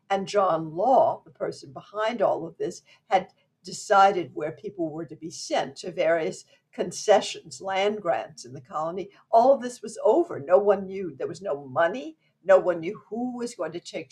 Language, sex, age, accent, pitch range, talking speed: English, female, 60-79, American, 170-230 Hz, 190 wpm